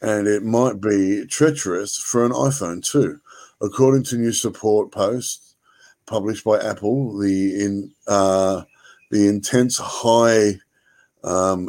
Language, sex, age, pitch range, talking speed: English, male, 50-69, 100-115 Hz, 125 wpm